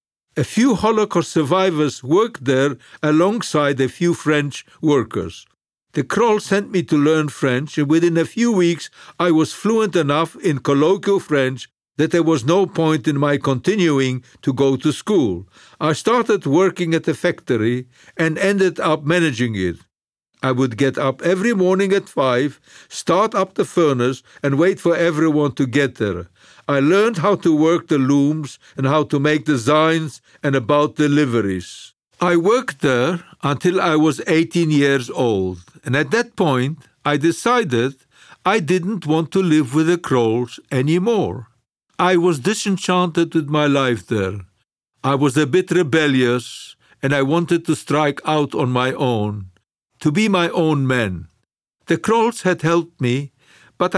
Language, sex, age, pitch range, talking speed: English, male, 50-69, 135-175 Hz, 160 wpm